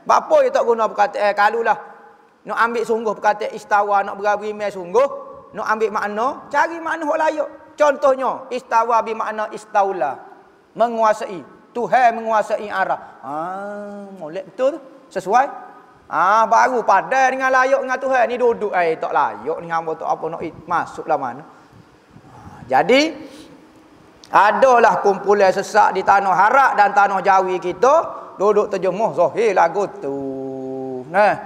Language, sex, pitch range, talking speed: Malay, male, 205-280 Hz, 140 wpm